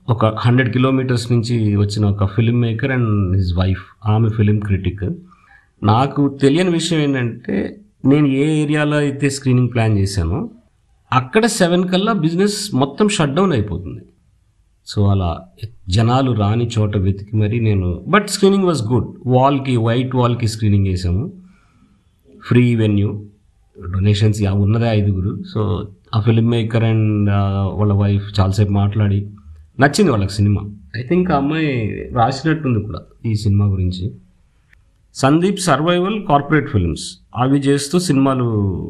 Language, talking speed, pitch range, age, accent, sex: Telugu, 125 wpm, 100-140 Hz, 50-69, native, male